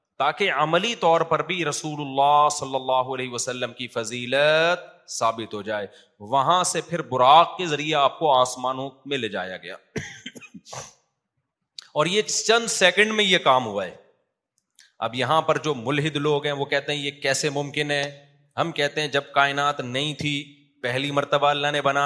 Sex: male